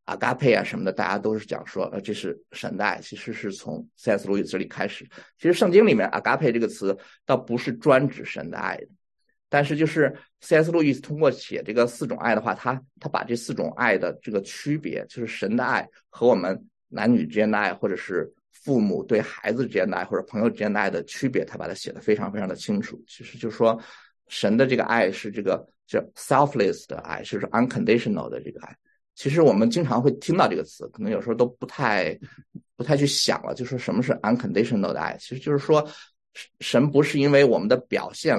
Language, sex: Chinese, male